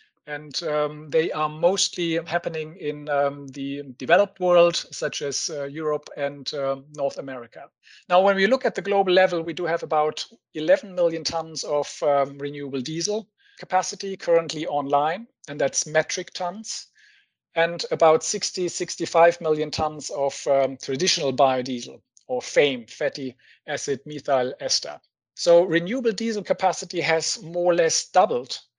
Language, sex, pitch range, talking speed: English, male, 145-185 Hz, 145 wpm